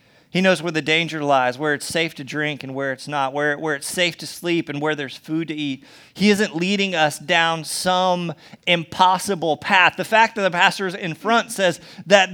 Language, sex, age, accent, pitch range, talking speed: English, male, 30-49, American, 175-260 Hz, 215 wpm